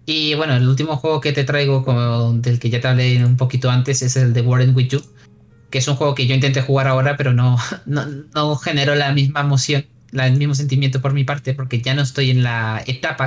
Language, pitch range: Spanish, 135-160 Hz